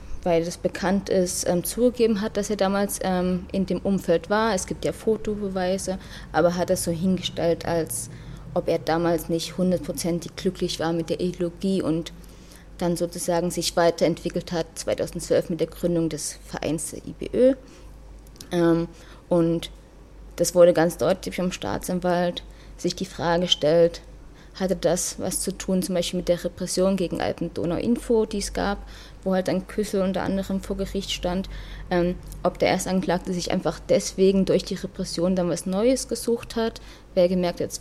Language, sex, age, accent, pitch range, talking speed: German, female, 20-39, German, 175-195 Hz, 165 wpm